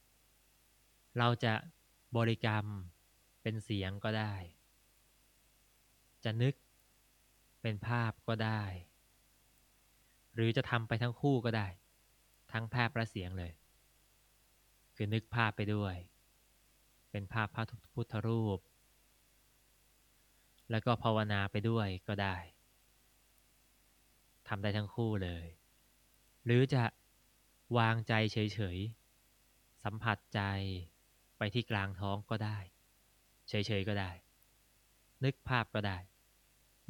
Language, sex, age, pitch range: Thai, male, 20-39, 100-120 Hz